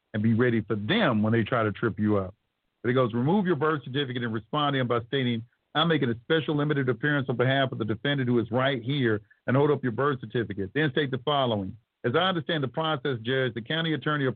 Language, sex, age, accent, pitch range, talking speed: English, male, 50-69, American, 120-150 Hz, 250 wpm